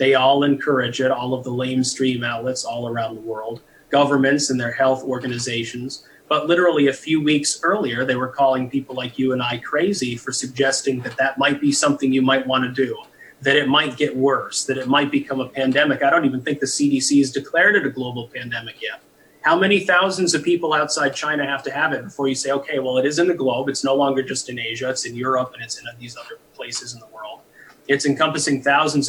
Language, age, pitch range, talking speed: English, 30-49, 130-150 Hz, 230 wpm